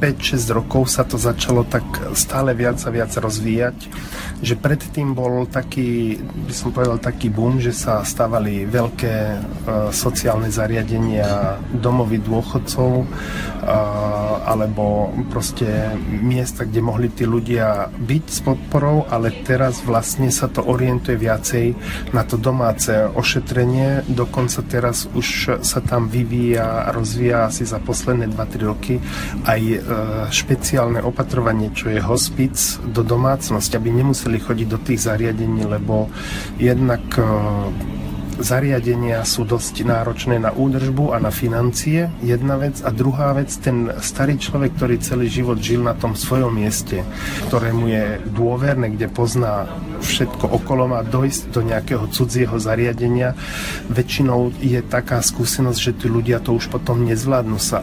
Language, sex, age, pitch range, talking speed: Slovak, male, 40-59, 110-125 Hz, 135 wpm